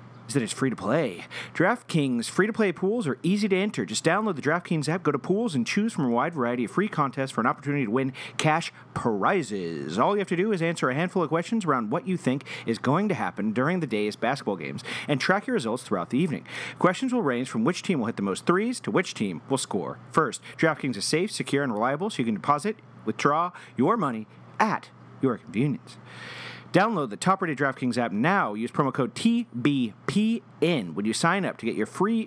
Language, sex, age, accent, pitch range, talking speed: English, male, 40-59, American, 130-195 Hz, 220 wpm